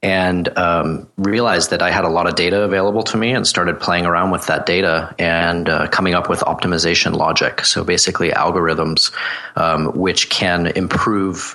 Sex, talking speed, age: male, 175 wpm, 30-49